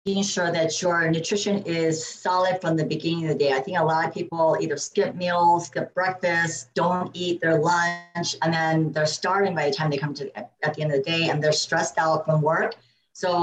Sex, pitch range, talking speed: female, 155-190 Hz, 230 wpm